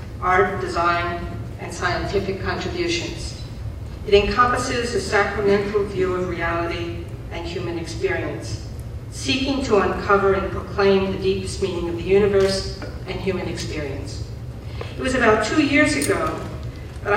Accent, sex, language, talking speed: American, female, English, 125 wpm